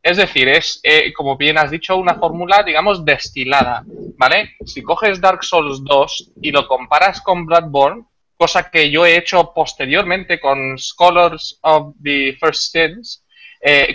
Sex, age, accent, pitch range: male, 20-39, Spanish, 150-185 Hz